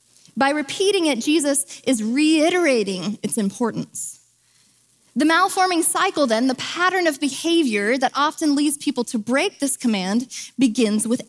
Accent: American